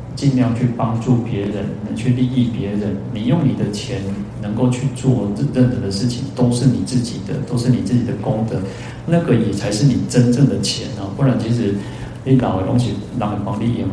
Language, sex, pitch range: Chinese, male, 110-130 Hz